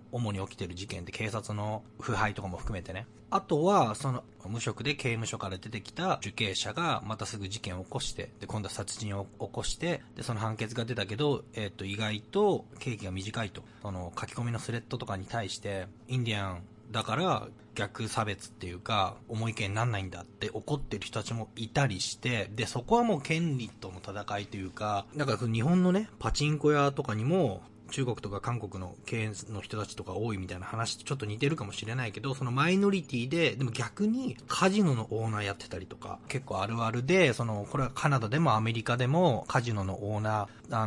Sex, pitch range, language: male, 105-130 Hz, Japanese